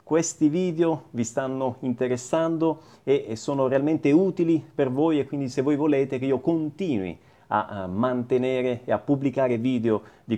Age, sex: 30-49, male